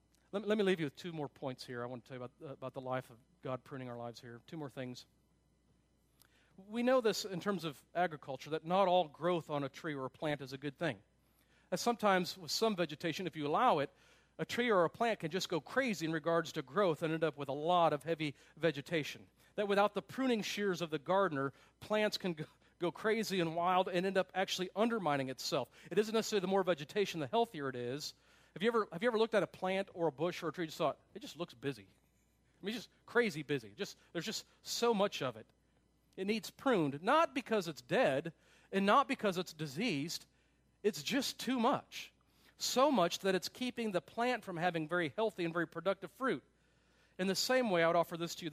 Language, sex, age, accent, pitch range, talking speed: English, male, 40-59, American, 145-200 Hz, 235 wpm